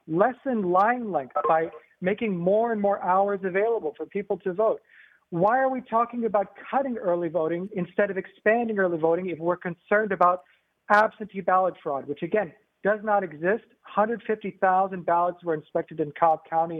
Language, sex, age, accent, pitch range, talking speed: English, male, 50-69, American, 170-205 Hz, 165 wpm